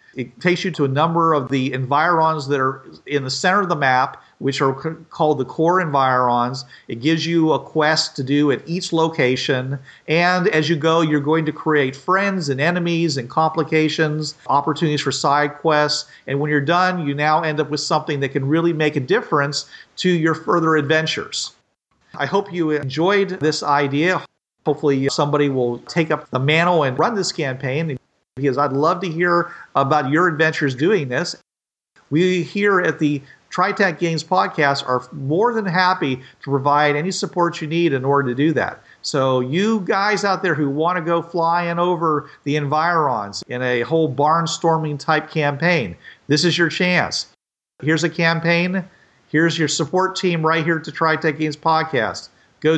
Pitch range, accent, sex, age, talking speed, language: 145-170 Hz, American, male, 40-59, 180 wpm, English